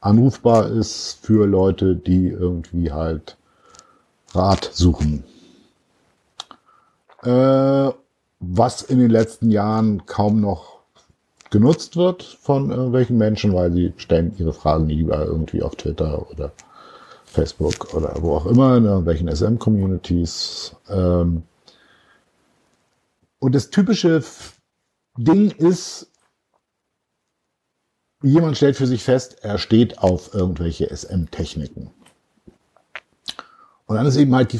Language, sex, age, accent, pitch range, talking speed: German, male, 50-69, German, 90-130 Hz, 105 wpm